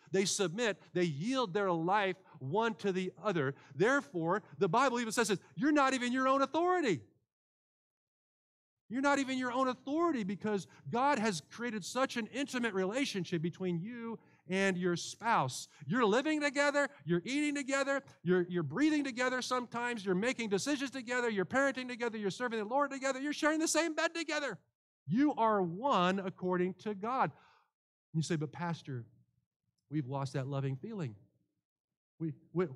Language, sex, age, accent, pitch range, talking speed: English, male, 50-69, American, 180-255 Hz, 160 wpm